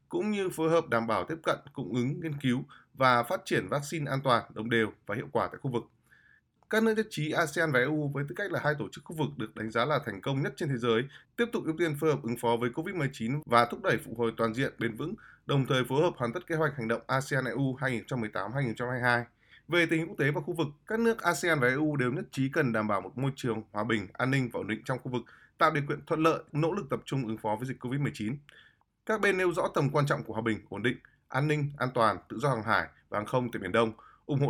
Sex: male